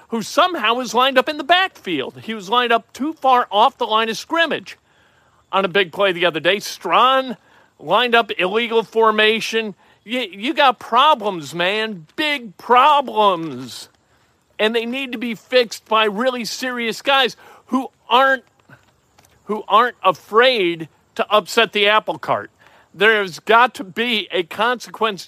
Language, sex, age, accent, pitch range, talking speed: English, male, 50-69, American, 185-255 Hz, 150 wpm